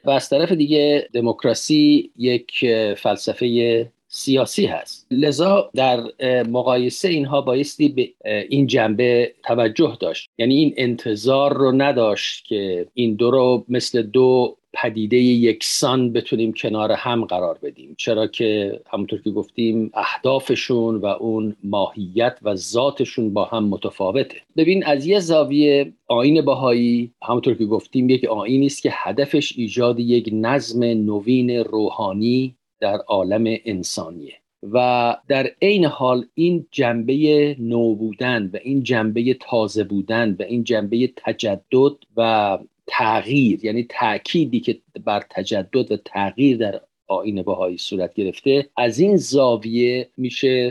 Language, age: Persian, 50-69